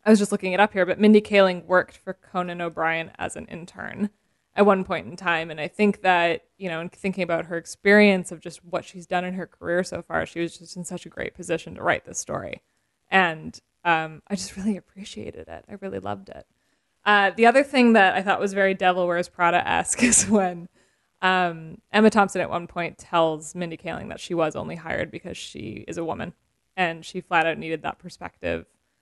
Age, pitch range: 20-39, 175-210 Hz